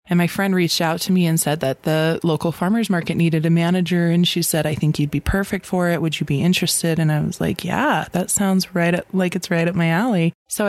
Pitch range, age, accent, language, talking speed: 155-180 Hz, 20-39, American, English, 265 wpm